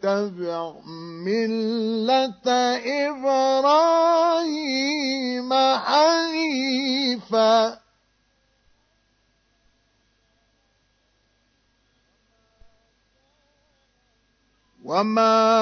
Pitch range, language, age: 225-290 Hz, Arabic, 50-69